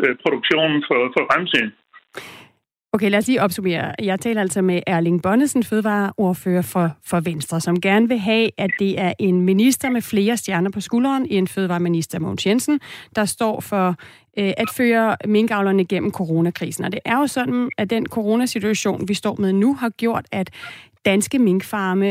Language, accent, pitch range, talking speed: Danish, native, 185-220 Hz, 170 wpm